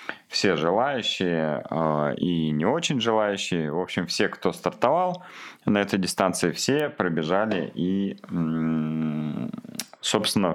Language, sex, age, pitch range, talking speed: Russian, male, 30-49, 80-95 Hz, 100 wpm